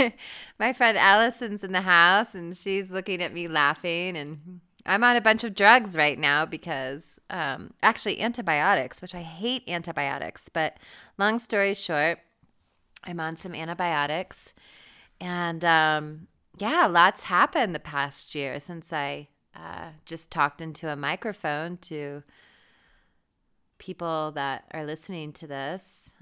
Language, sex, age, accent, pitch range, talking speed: English, female, 30-49, American, 155-220 Hz, 135 wpm